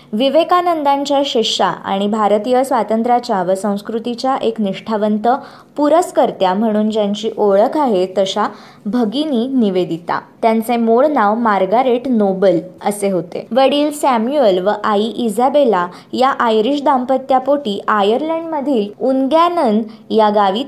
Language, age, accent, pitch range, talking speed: Marathi, 20-39, native, 205-265 Hz, 75 wpm